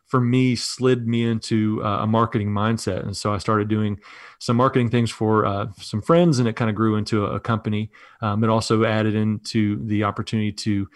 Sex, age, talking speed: male, 30-49, 210 wpm